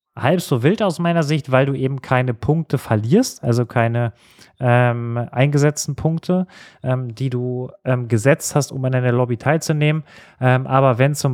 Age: 30-49